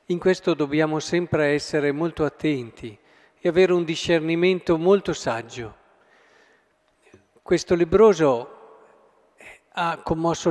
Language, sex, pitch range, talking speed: Italian, male, 160-200 Hz, 95 wpm